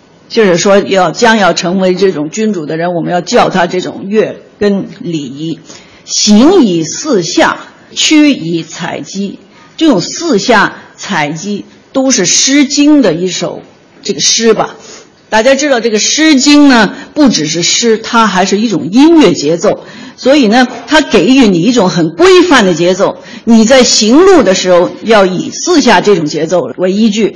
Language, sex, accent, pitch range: Chinese, female, native, 180-260 Hz